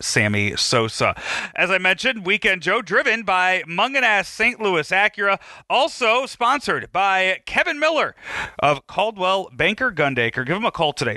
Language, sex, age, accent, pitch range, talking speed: English, male, 40-59, American, 130-190 Hz, 145 wpm